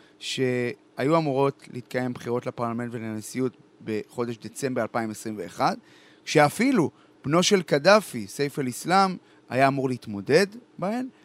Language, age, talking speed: Hebrew, 30-49, 100 wpm